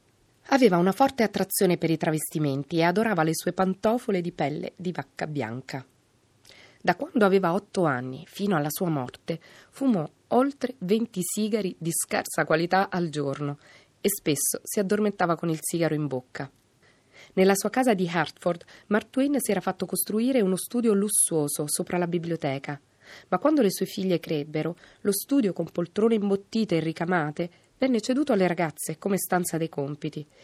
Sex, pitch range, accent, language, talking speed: female, 150-210 Hz, native, Italian, 160 wpm